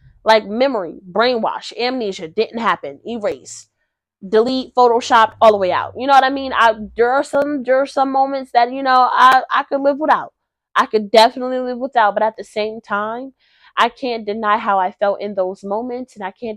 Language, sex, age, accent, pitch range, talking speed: English, female, 20-39, American, 235-300 Hz, 205 wpm